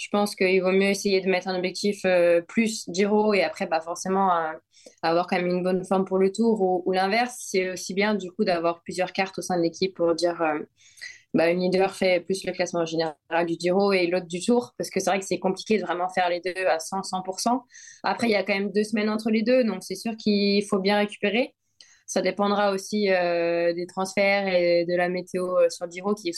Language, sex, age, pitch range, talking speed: French, female, 20-39, 180-205 Hz, 240 wpm